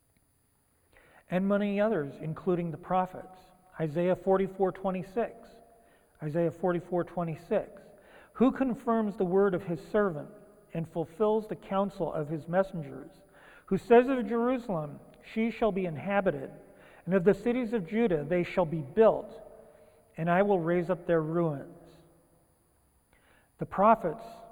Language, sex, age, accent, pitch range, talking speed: English, male, 50-69, American, 160-215 Hz, 125 wpm